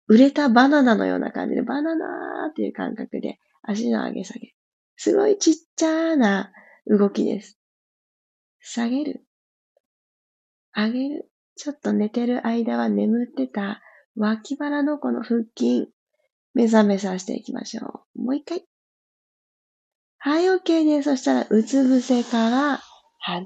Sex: female